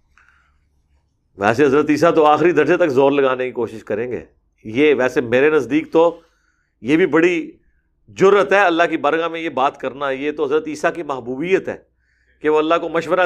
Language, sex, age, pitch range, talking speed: Urdu, male, 50-69, 150-210 Hz, 190 wpm